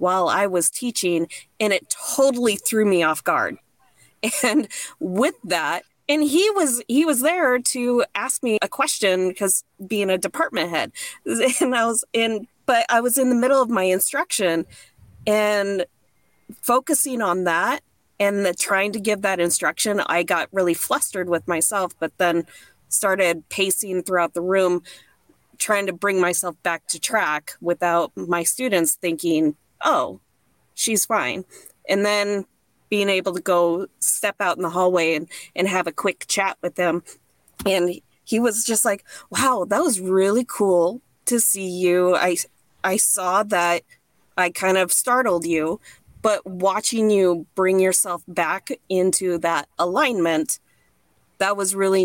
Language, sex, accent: English, female, American